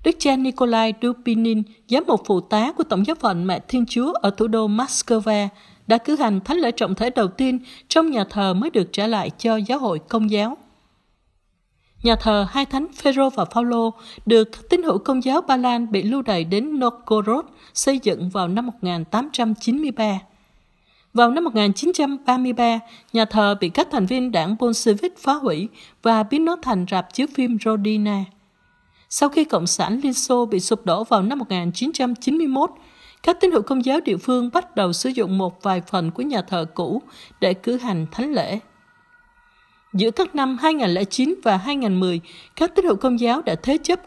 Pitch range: 205-270 Hz